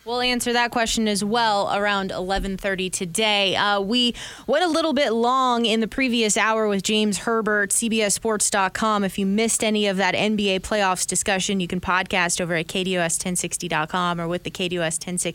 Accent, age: American, 20-39